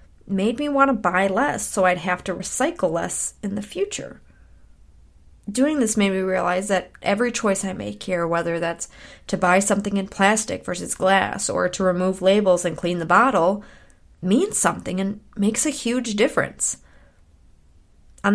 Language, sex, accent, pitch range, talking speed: English, female, American, 170-210 Hz, 165 wpm